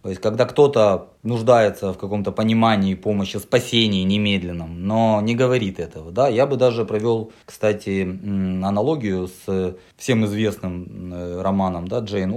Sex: male